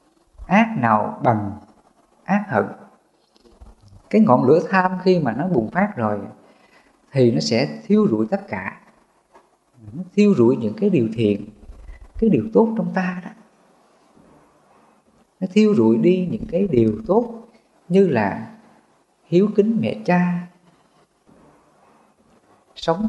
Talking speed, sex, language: 125 wpm, female, English